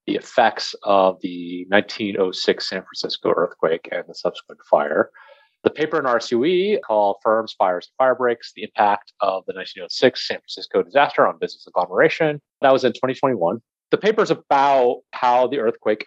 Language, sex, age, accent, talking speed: English, male, 30-49, American, 165 wpm